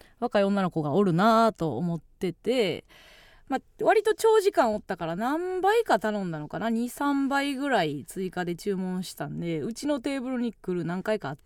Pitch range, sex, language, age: 170-275 Hz, female, Japanese, 20-39